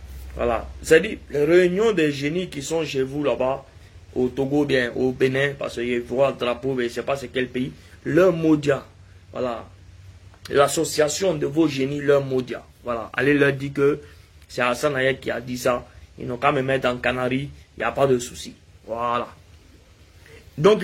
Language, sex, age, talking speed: English, male, 30-49, 190 wpm